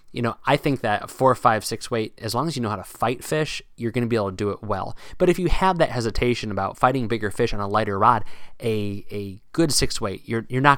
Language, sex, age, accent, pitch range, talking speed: English, male, 20-39, American, 100-125 Hz, 275 wpm